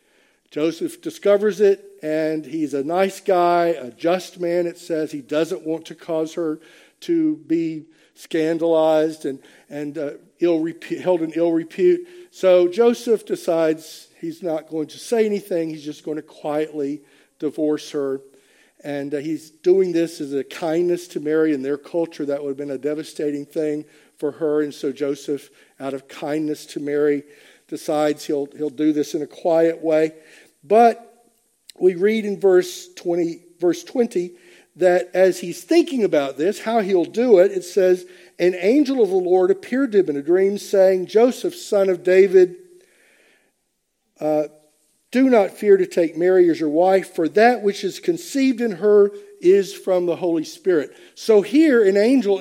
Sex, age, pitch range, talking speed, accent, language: male, 50-69, 155-225 Hz, 165 wpm, American, English